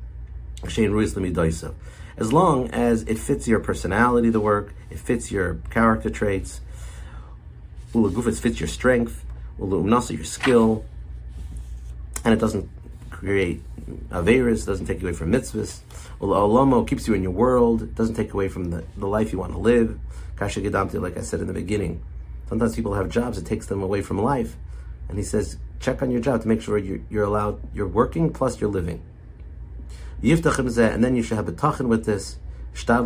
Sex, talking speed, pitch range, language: male, 165 wpm, 80-115 Hz, English